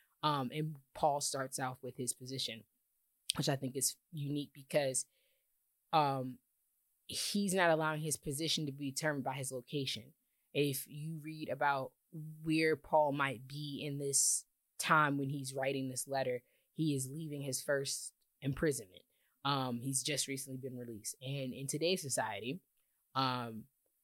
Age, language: 20-39, English